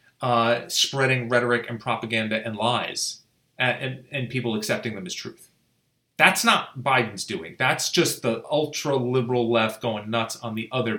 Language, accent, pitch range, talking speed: English, American, 120-155 Hz, 155 wpm